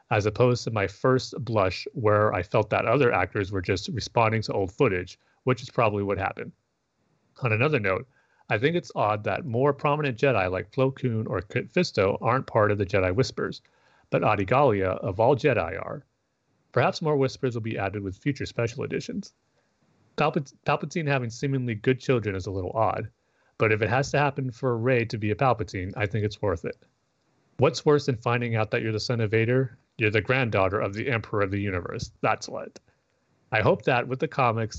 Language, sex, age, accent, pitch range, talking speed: English, male, 30-49, American, 105-130 Hz, 200 wpm